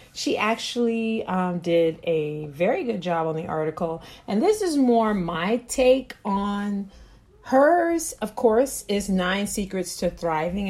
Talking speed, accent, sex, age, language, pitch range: 145 wpm, American, female, 40-59, English, 175-235 Hz